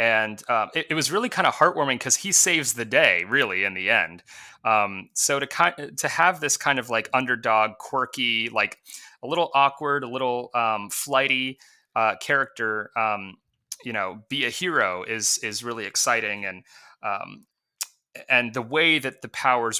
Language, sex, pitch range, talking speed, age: English, male, 110-135 Hz, 175 wpm, 30-49